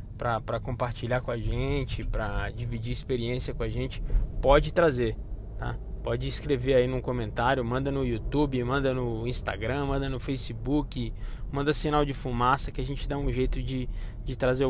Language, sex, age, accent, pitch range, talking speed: Portuguese, male, 20-39, Brazilian, 120-150 Hz, 165 wpm